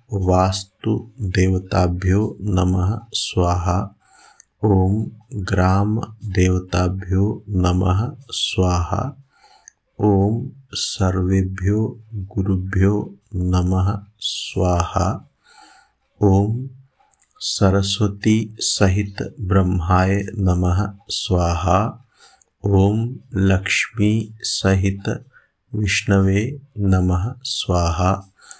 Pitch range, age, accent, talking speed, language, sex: 95-105 Hz, 50-69, native, 40 wpm, Hindi, male